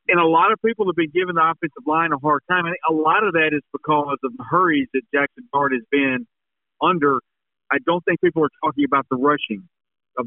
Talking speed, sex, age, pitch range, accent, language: 240 wpm, male, 50-69, 130-165 Hz, American, English